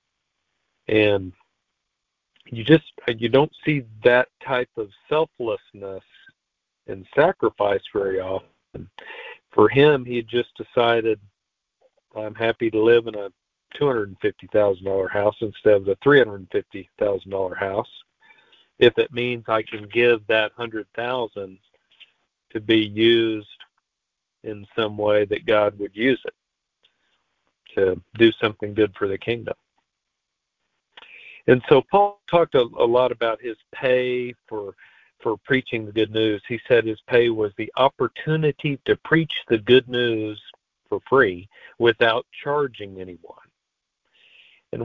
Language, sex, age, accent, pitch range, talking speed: English, male, 50-69, American, 105-125 Hz, 125 wpm